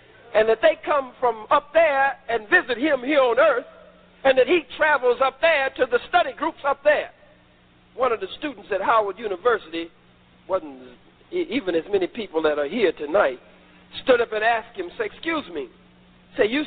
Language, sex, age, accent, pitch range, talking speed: English, male, 50-69, American, 220-330 Hz, 190 wpm